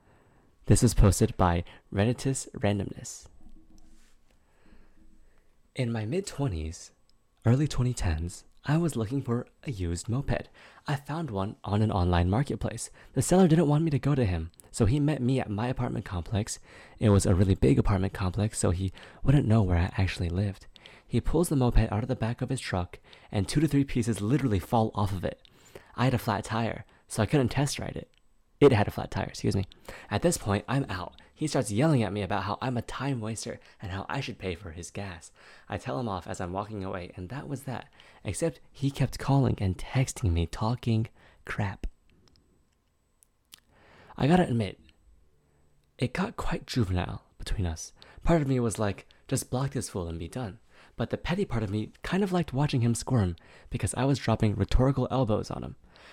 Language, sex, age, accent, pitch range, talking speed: English, male, 20-39, American, 95-130 Hz, 195 wpm